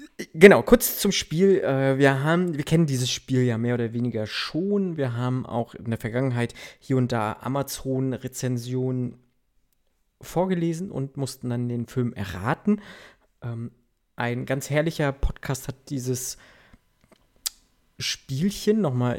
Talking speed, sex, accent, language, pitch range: 120 wpm, male, German, German, 115-145 Hz